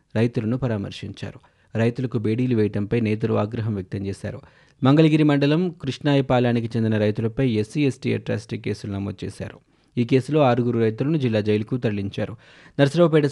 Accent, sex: native, male